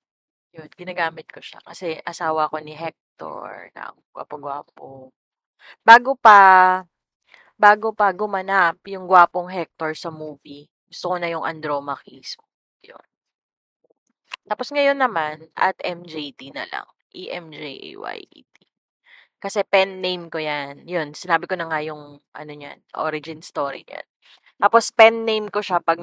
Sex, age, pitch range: female, 20-39, 160-210 Hz